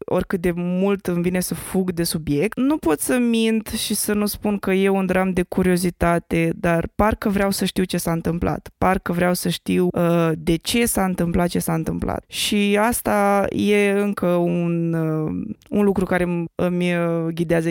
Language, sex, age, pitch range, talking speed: Romanian, female, 20-39, 175-210 Hz, 185 wpm